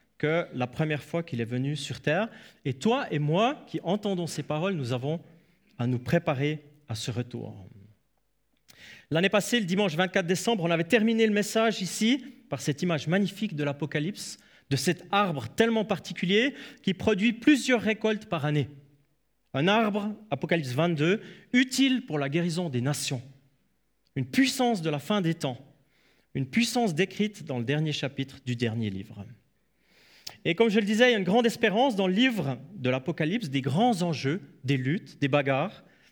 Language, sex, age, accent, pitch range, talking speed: French, male, 30-49, French, 145-220 Hz, 175 wpm